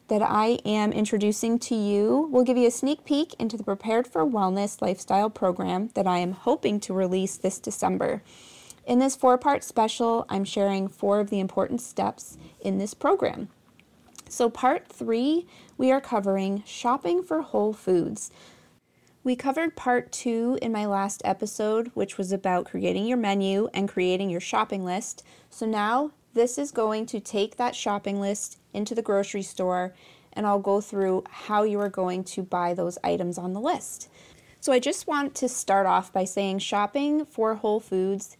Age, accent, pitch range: 30-49, American, 195-235 Hz